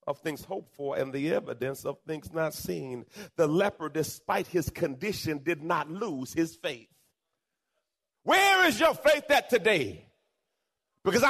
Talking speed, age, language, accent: 150 wpm, 40-59, English, American